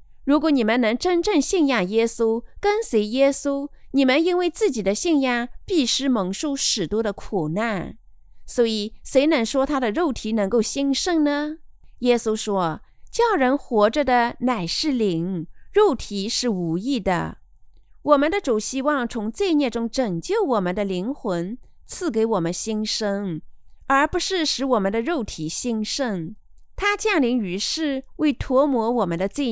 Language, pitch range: Chinese, 210-280 Hz